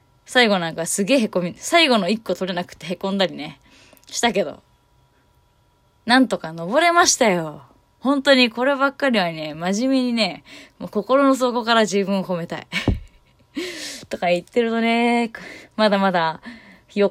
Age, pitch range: 20-39, 170-230 Hz